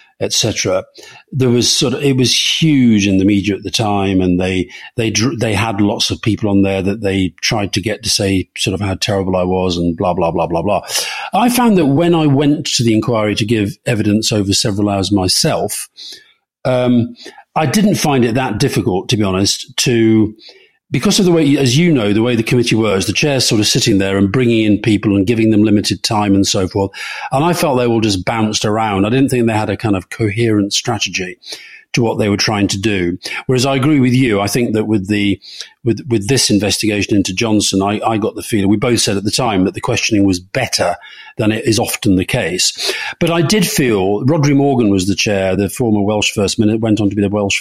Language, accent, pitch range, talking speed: English, British, 100-125 Hz, 230 wpm